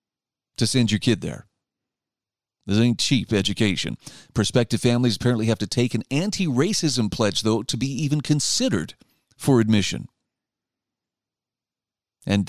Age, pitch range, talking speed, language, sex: 40-59, 110-150 Hz, 125 wpm, English, male